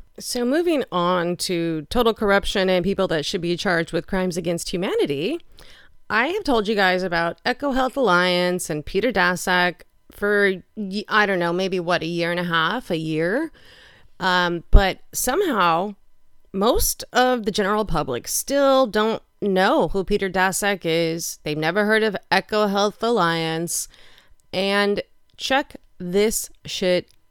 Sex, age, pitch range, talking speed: female, 30-49, 180-250 Hz, 145 wpm